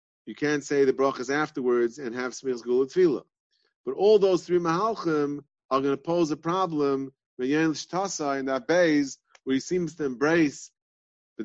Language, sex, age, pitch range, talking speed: English, male, 30-49, 130-160 Hz, 170 wpm